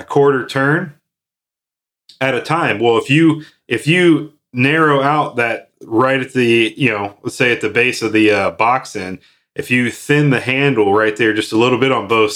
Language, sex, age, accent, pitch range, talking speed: English, male, 30-49, American, 105-130 Hz, 205 wpm